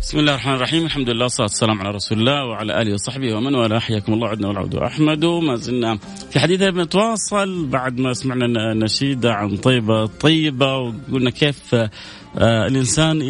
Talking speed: 170 wpm